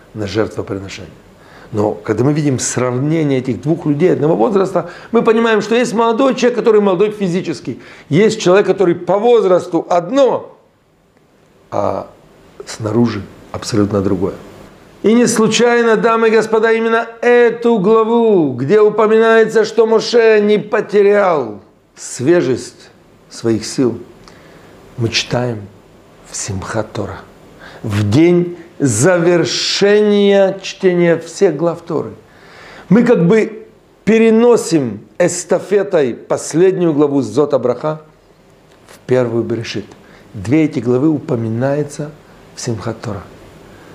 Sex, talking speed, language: male, 105 wpm, Russian